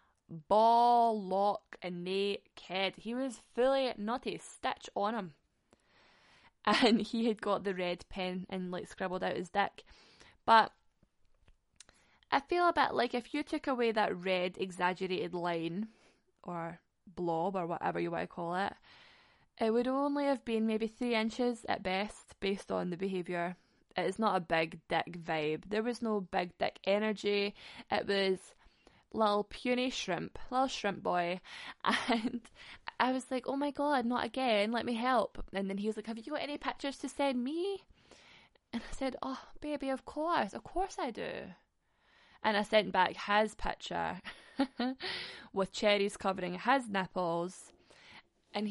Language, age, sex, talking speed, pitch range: English, 10-29, female, 160 wpm, 185-245 Hz